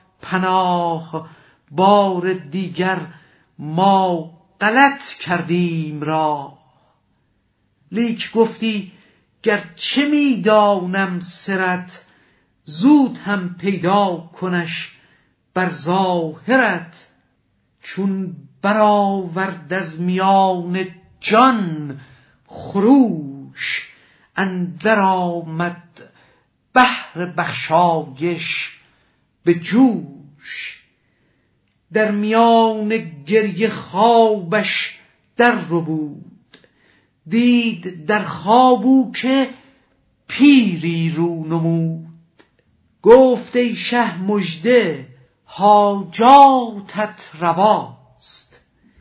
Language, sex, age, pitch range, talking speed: Persian, male, 50-69, 165-220 Hz, 60 wpm